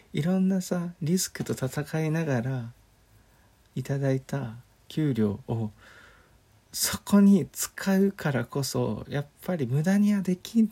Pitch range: 105-150 Hz